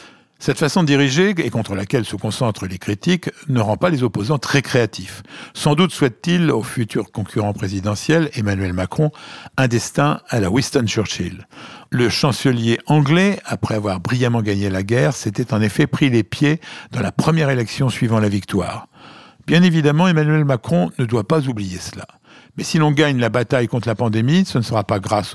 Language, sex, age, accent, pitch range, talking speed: French, male, 60-79, French, 110-155 Hz, 180 wpm